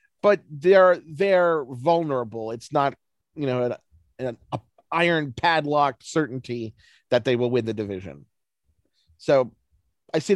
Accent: American